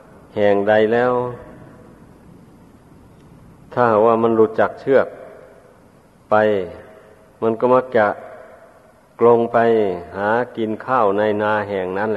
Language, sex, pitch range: Thai, male, 105-120 Hz